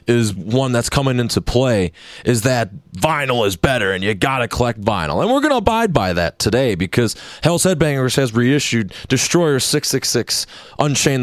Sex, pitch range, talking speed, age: male, 100-130 Hz, 165 wpm, 30-49